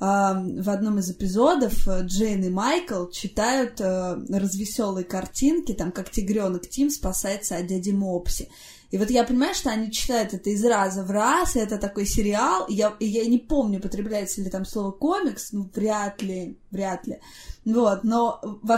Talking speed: 175 wpm